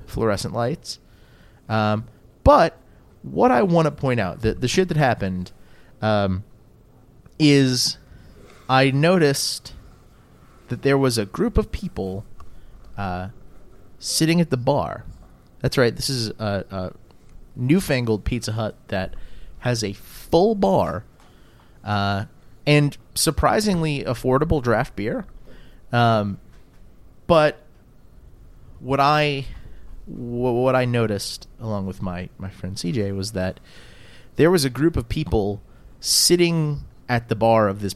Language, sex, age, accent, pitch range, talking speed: English, male, 30-49, American, 105-155 Hz, 120 wpm